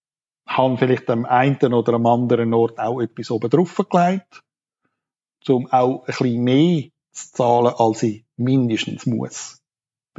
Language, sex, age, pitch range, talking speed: German, male, 50-69, 115-145 Hz, 135 wpm